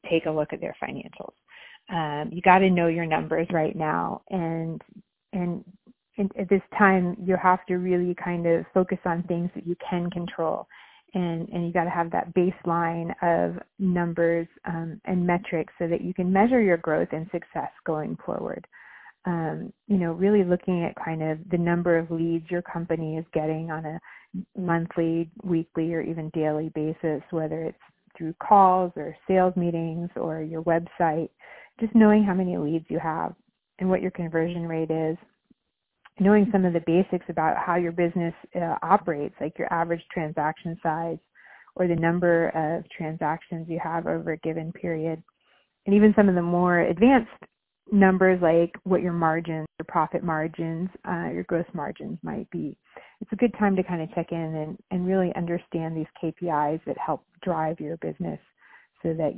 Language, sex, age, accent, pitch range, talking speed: English, female, 30-49, American, 160-185 Hz, 175 wpm